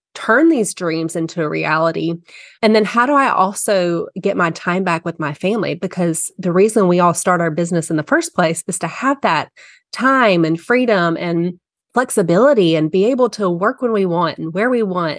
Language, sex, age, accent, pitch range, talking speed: English, female, 30-49, American, 170-215 Hz, 205 wpm